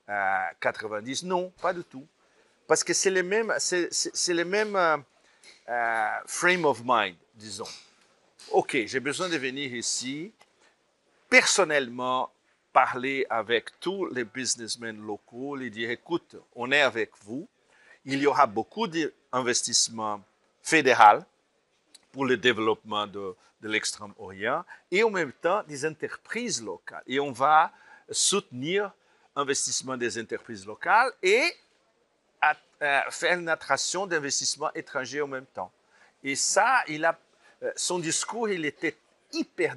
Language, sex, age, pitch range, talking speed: French, male, 50-69, 115-175 Hz, 135 wpm